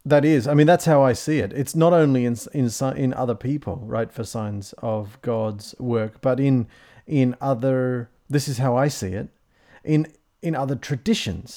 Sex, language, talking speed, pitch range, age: male, English, 190 wpm, 120-155 Hz, 40-59